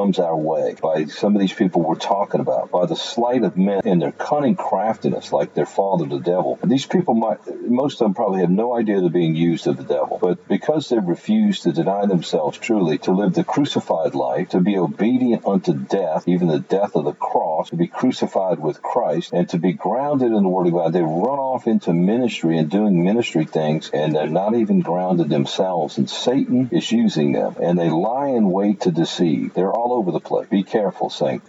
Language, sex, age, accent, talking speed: English, male, 50-69, American, 215 wpm